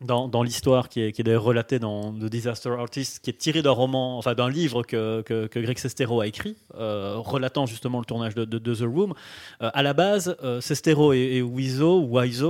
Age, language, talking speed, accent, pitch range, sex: 30-49, French, 230 wpm, French, 120-145 Hz, male